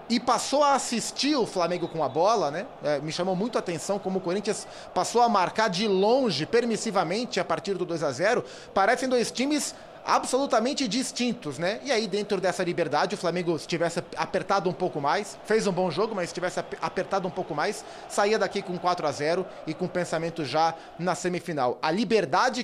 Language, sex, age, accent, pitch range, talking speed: Portuguese, male, 20-39, Brazilian, 175-220 Hz, 185 wpm